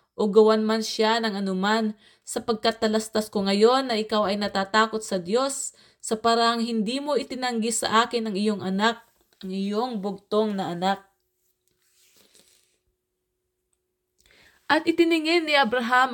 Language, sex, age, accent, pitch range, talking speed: English, female, 20-39, Filipino, 205-235 Hz, 130 wpm